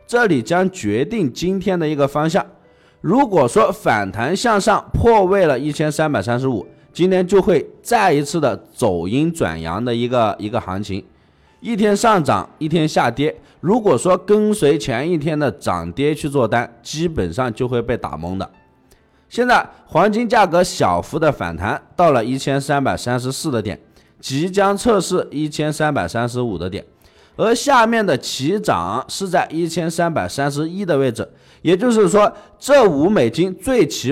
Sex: male